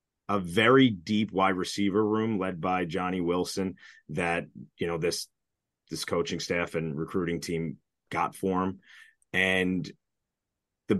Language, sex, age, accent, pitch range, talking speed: English, male, 30-49, American, 90-105 Hz, 135 wpm